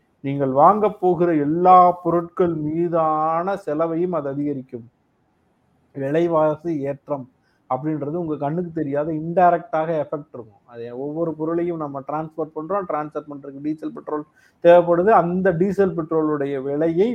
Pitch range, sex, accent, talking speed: 135-175 Hz, male, native, 115 wpm